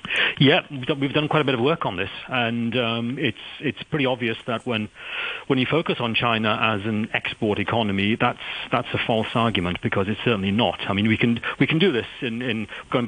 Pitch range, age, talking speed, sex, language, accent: 100-120 Hz, 40-59, 215 wpm, male, English, British